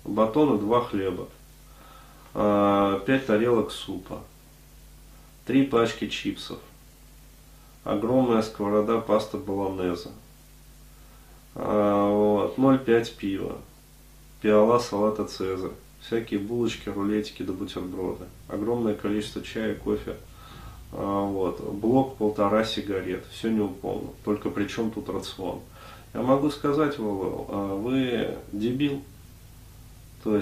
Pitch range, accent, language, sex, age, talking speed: 95-115 Hz, native, Russian, male, 20-39, 90 wpm